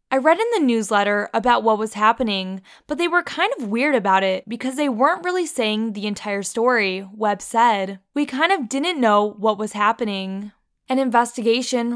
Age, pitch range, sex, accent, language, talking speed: 10-29, 215-260 Hz, female, American, English, 185 wpm